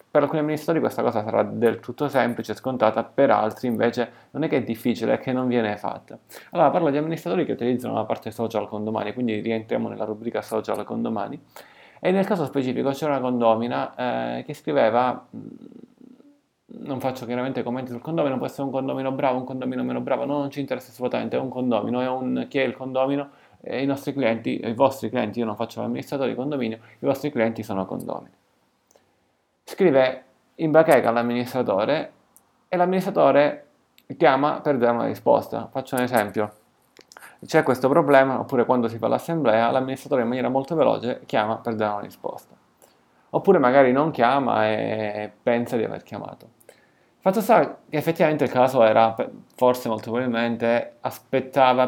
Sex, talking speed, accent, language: male, 175 wpm, native, Italian